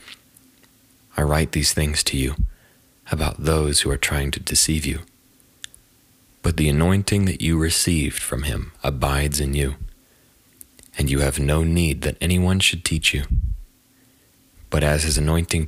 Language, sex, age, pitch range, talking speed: English, male, 30-49, 70-85 Hz, 150 wpm